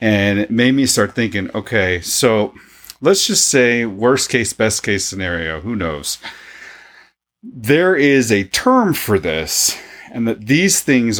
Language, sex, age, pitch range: English, male, 40-59, 90-125 Hz